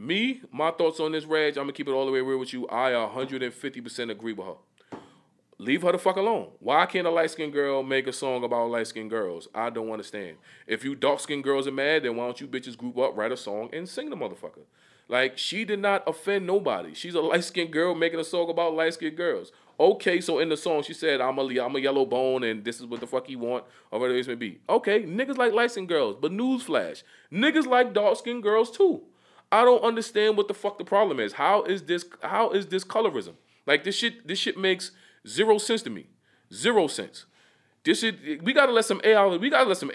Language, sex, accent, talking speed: English, male, American, 235 wpm